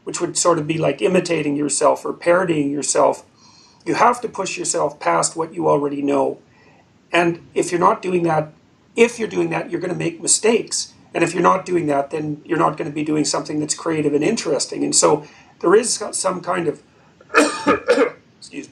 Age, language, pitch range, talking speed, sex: 40-59, English, 140-160 Hz, 190 wpm, male